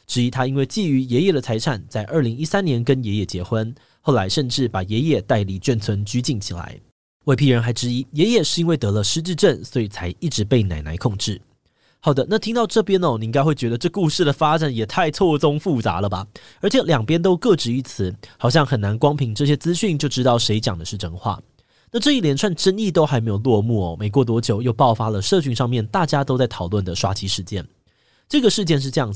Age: 20-39